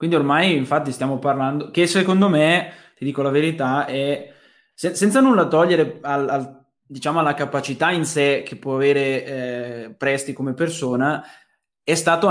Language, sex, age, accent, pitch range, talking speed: Italian, male, 20-39, native, 140-175 Hz, 160 wpm